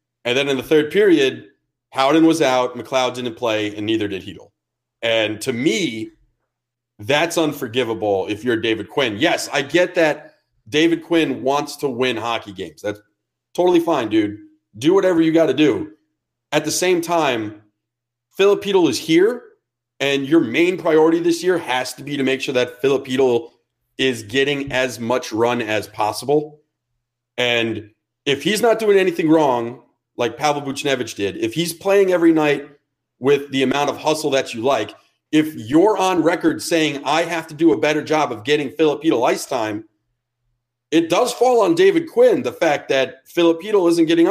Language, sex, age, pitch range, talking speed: English, male, 30-49, 120-165 Hz, 170 wpm